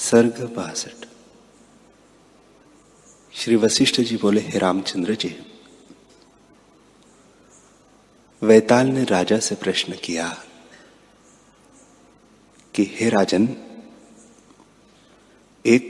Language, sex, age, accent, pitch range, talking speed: Hindi, male, 30-49, native, 105-125 Hz, 70 wpm